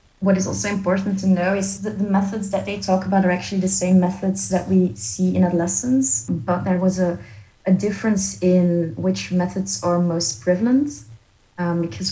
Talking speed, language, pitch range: 190 wpm, English, 170-190 Hz